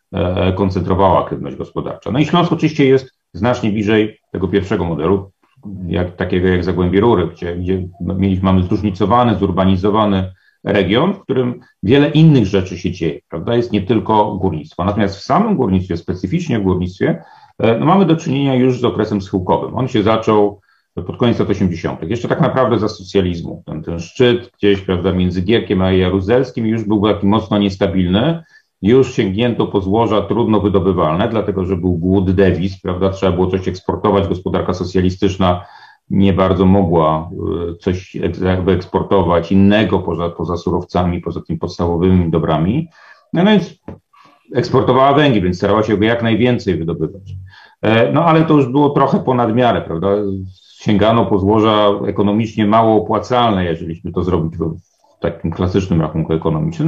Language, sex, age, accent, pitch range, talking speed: Polish, male, 40-59, native, 90-115 Hz, 150 wpm